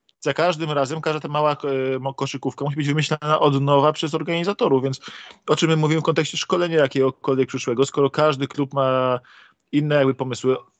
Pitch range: 130-155 Hz